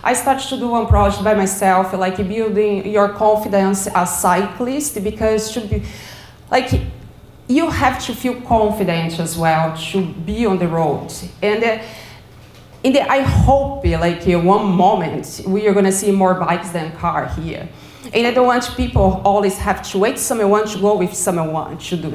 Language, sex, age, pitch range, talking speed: English, female, 30-49, 185-225 Hz, 180 wpm